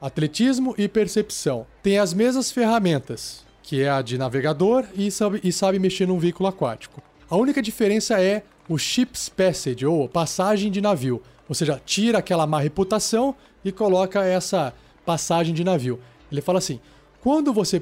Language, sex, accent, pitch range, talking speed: Portuguese, male, Brazilian, 155-205 Hz, 160 wpm